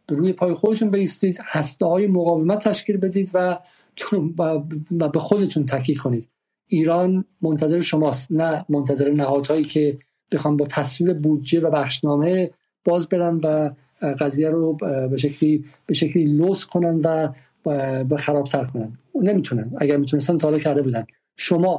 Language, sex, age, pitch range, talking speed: Persian, male, 50-69, 145-170 Hz, 135 wpm